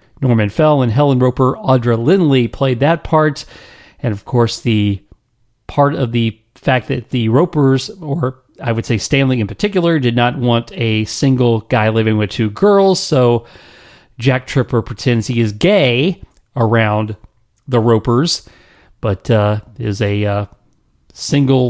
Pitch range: 110-140 Hz